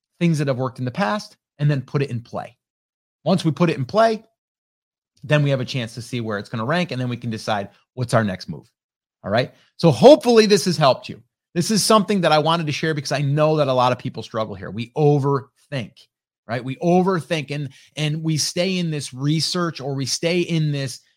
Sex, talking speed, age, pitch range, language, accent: male, 235 wpm, 30-49, 125-180 Hz, English, American